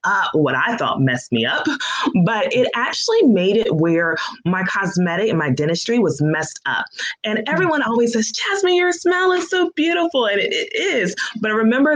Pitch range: 155-225 Hz